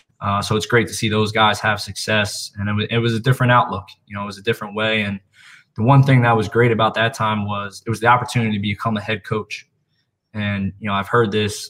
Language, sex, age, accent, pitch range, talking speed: English, male, 20-39, American, 100-110 Hz, 260 wpm